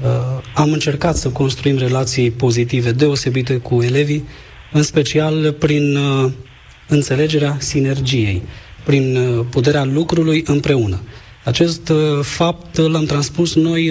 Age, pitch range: 20-39, 120-150 Hz